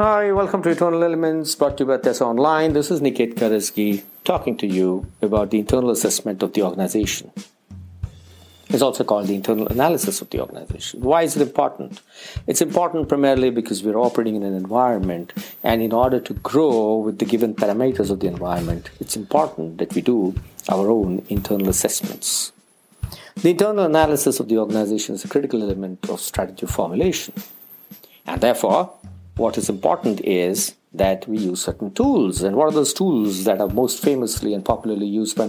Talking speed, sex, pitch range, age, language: 180 wpm, male, 100-140 Hz, 50-69, English